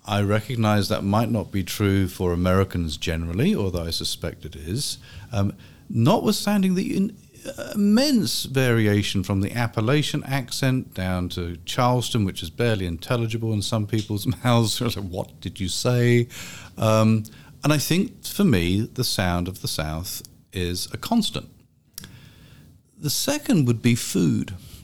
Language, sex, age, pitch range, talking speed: English, male, 50-69, 100-145 Hz, 140 wpm